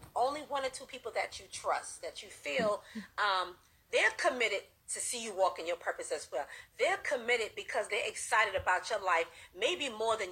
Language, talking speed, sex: English, 200 wpm, female